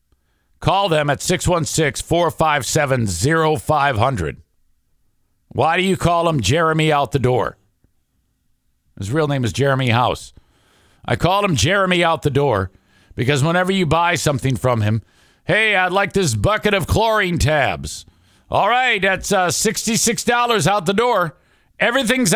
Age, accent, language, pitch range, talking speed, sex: 50-69, American, English, 125-185 Hz, 135 wpm, male